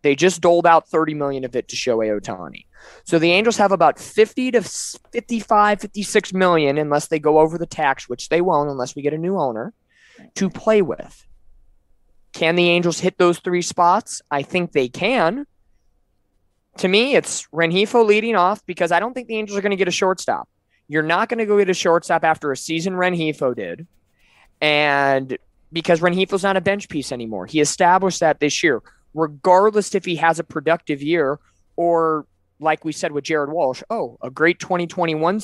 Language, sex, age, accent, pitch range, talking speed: English, male, 20-39, American, 145-190 Hz, 190 wpm